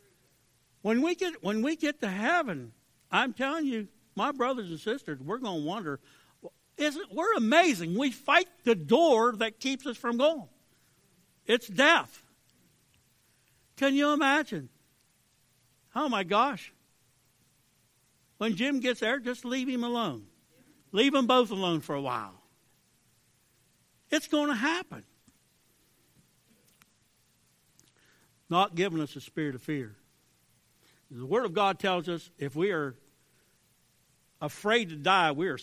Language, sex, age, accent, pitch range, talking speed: English, male, 60-79, American, 140-235 Hz, 135 wpm